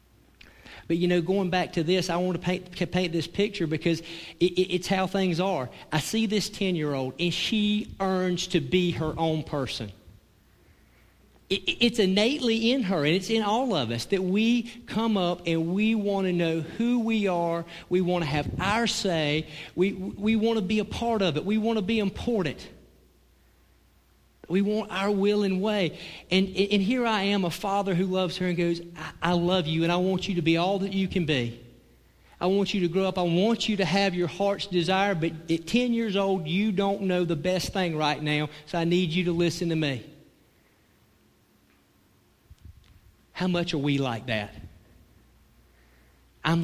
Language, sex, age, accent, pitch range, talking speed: English, male, 40-59, American, 150-195 Hz, 195 wpm